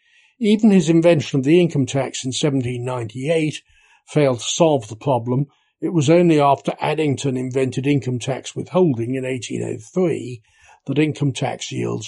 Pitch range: 125-160 Hz